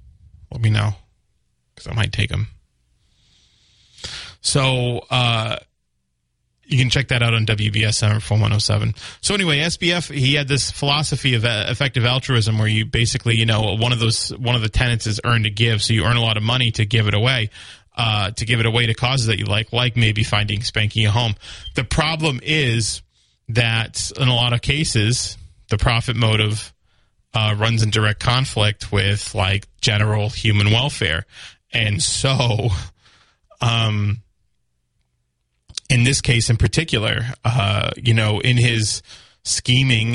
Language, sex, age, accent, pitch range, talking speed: English, male, 20-39, American, 105-120 Hz, 160 wpm